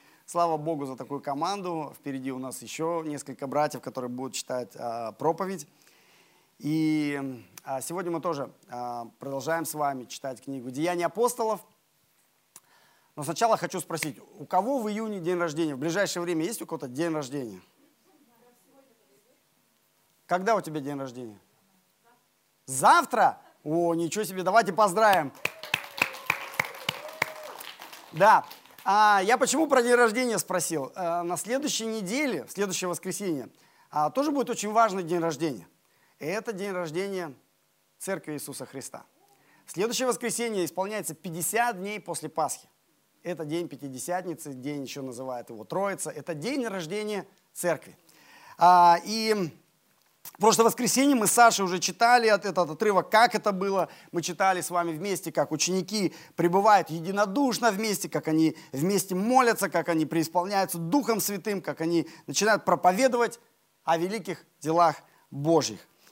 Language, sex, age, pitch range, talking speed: Russian, male, 30-49, 155-210 Hz, 130 wpm